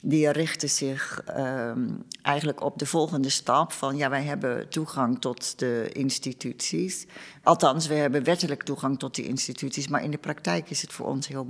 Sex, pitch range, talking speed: female, 130-150 Hz, 170 wpm